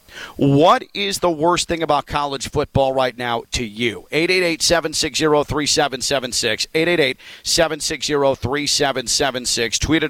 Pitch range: 125-155 Hz